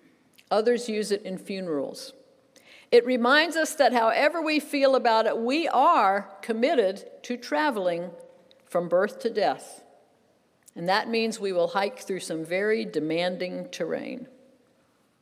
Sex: female